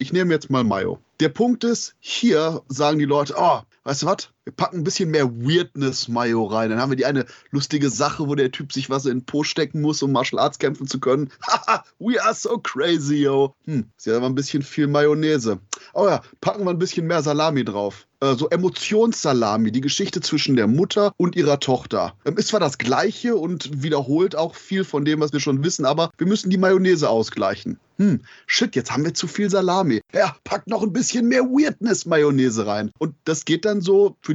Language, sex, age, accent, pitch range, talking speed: German, male, 30-49, German, 135-170 Hz, 215 wpm